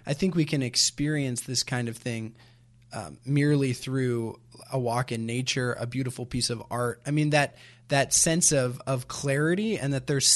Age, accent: 20-39, American